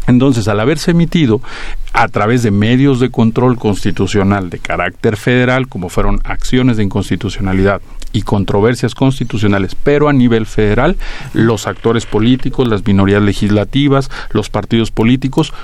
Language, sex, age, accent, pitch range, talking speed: Spanish, male, 40-59, Mexican, 100-125 Hz, 135 wpm